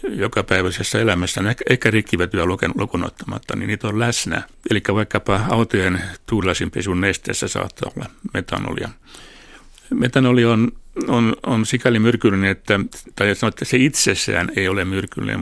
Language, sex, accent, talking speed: Finnish, male, native, 135 wpm